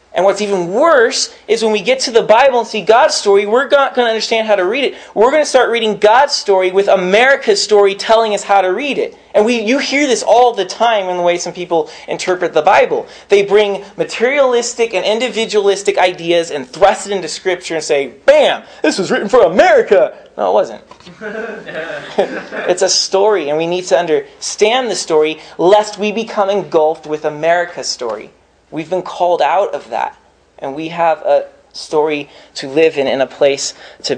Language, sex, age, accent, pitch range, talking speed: English, male, 30-49, American, 175-225 Hz, 200 wpm